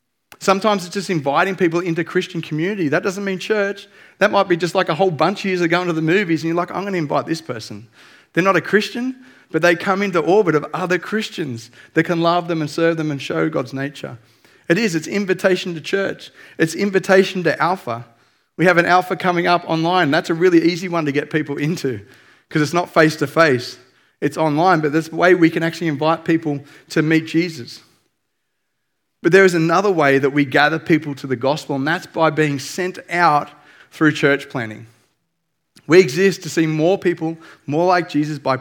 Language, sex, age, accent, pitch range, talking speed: English, male, 30-49, Australian, 145-175 Hz, 210 wpm